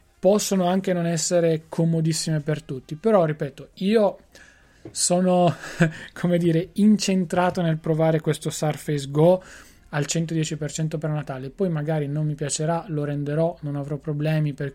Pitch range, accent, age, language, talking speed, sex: 155-180 Hz, native, 20-39, Italian, 140 wpm, male